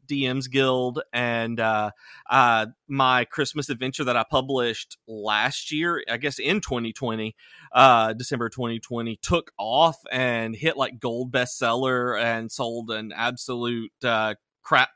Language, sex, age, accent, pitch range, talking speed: English, male, 30-49, American, 115-140 Hz, 130 wpm